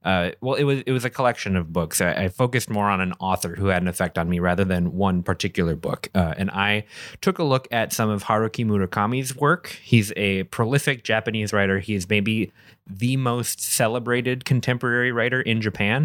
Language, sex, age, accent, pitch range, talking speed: English, male, 30-49, American, 95-125 Hz, 205 wpm